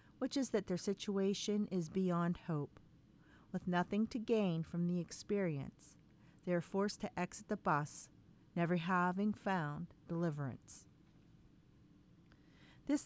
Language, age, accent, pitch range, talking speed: English, 40-59, American, 160-205 Hz, 125 wpm